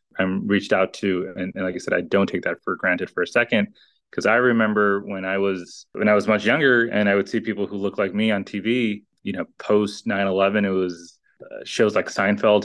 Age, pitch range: 20-39, 95-105 Hz